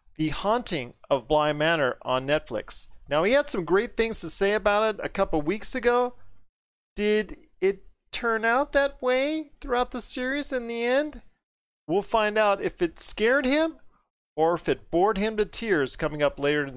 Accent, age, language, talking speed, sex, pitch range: American, 40-59, English, 185 wpm, male, 160-235 Hz